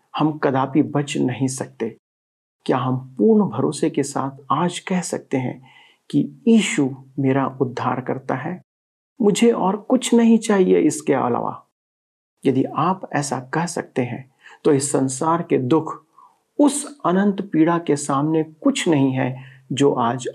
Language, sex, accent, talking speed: Hindi, male, native, 145 wpm